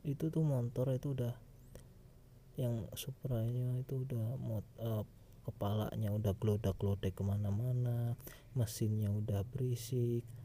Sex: male